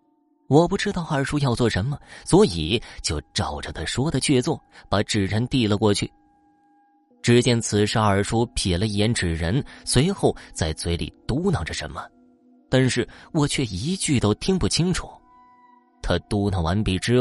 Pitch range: 100-155 Hz